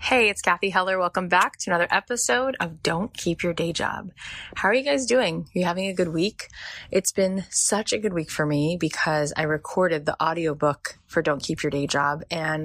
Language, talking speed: English, 220 wpm